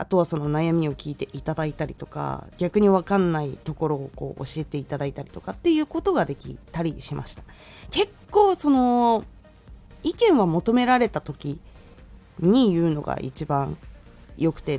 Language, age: Japanese, 20-39